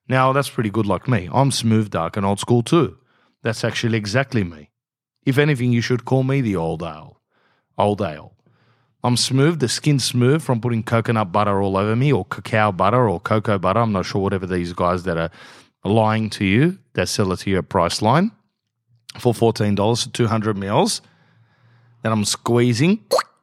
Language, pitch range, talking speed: English, 110-145 Hz, 180 wpm